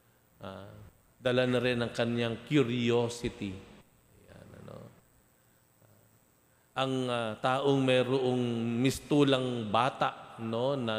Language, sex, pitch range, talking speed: Filipino, male, 105-130 Hz, 100 wpm